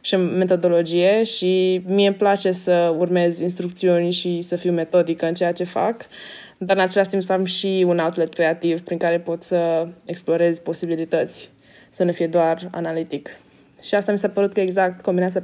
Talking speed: 180 wpm